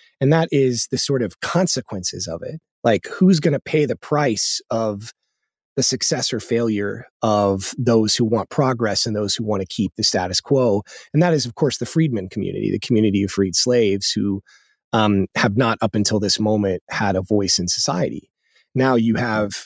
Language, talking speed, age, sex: English, 195 wpm, 30-49, male